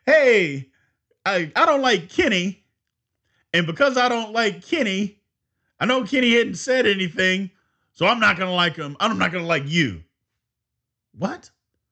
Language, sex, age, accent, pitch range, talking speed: English, male, 40-59, American, 145-235 Hz, 150 wpm